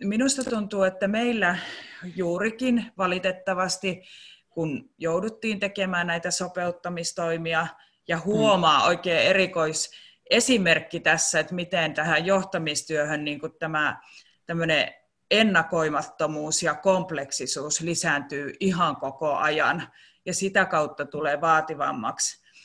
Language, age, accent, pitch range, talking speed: Finnish, 30-49, native, 155-190 Hz, 95 wpm